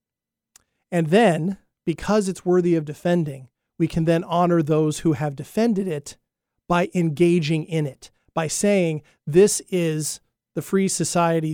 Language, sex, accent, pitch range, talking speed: English, male, American, 150-185 Hz, 140 wpm